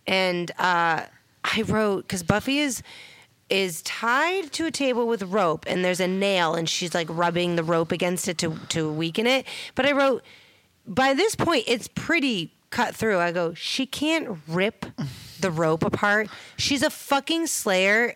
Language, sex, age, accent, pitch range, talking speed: English, female, 30-49, American, 175-235 Hz, 170 wpm